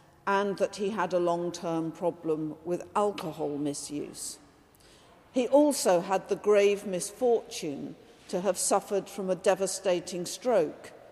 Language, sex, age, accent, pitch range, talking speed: English, female, 50-69, British, 175-230 Hz, 125 wpm